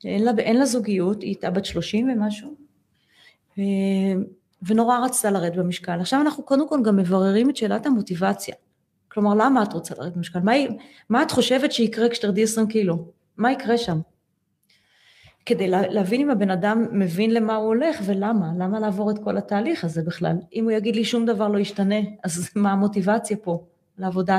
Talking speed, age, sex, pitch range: 175 wpm, 30-49, female, 195-250 Hz